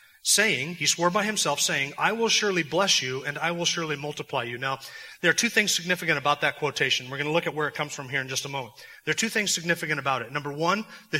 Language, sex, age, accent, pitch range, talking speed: English, male, 30-49, American, 140-175 Hz, 270 wpm